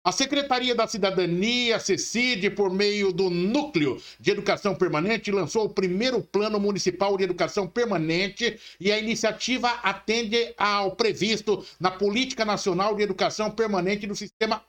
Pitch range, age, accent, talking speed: 190-225 Hz, 60-79, Brazilian, 140 wpm